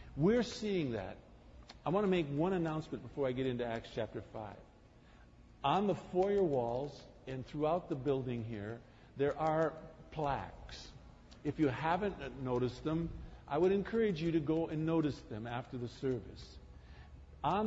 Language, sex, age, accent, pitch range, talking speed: English, male, 50-69, American, 100-160 Hz, 155 wpm